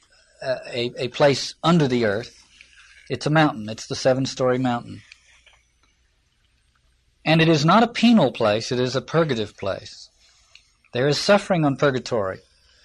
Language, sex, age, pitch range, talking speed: English, male, 50-69, 120-170 Hz, 140 wpm